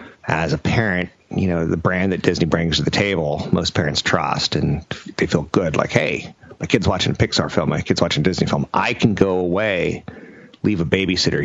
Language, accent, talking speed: English, American, 215 wpm